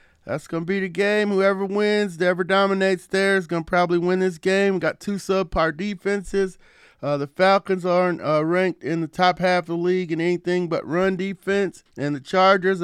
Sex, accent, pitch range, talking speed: male, American, 150-195 Hz, 200 wpm